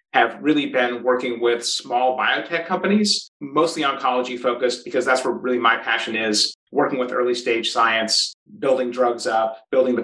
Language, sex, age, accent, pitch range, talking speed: English, male, 30-49, American, 120-140 Hz, 165 wpm